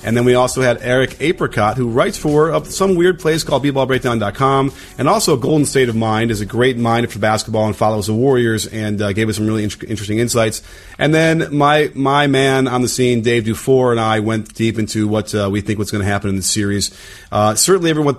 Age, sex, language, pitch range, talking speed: 30-49, male, English, 105-135 Hz, 230 wpm